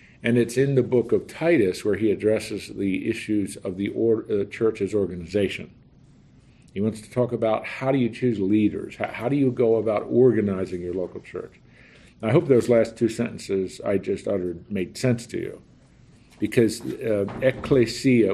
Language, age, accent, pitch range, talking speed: English, 50-69, American, 100-125 Hz, 175 wpm